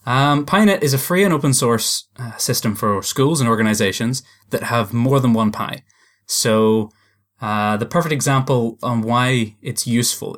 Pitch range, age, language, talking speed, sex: 105-130 Hz, 20-39, English, 170 wpm, male